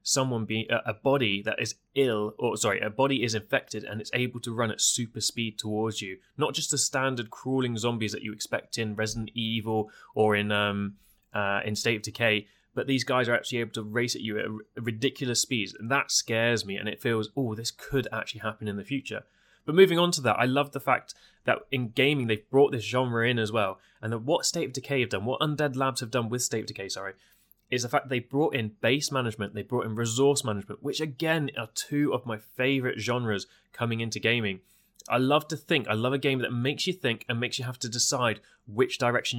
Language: English